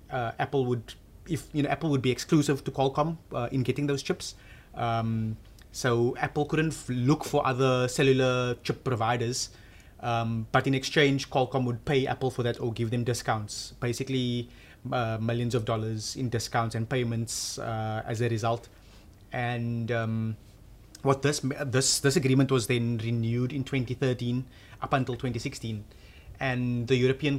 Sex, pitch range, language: male, 115-135 Hz, English